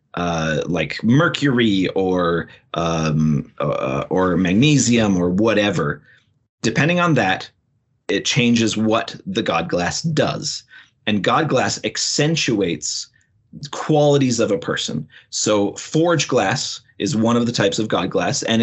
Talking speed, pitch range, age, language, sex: 130 wpm, 100-130 Hz, 30-49, English, male